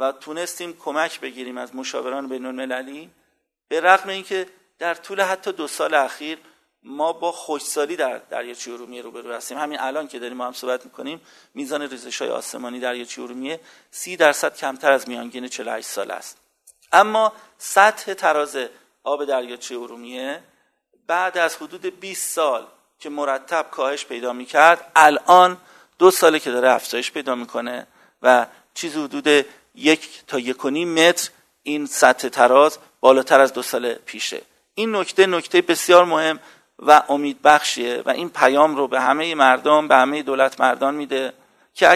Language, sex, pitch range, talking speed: Persian, male, 130-175 Hz, 150 wpm